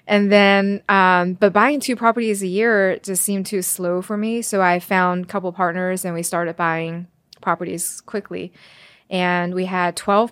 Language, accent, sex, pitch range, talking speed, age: English, American, female, 175-200 Hz, 180 wpm, 20-39